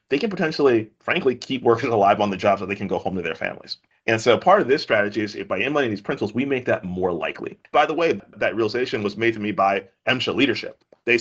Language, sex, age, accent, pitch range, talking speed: English, male, 30-49, American, 95-110 Hz, 255 wpm